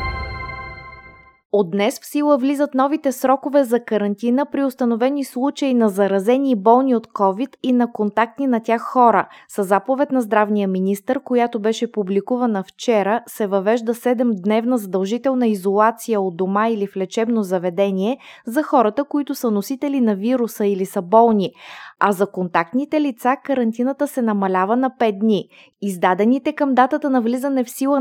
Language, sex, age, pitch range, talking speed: Bulgarian, female, 20-39, 200-250 Hz, 150 wpm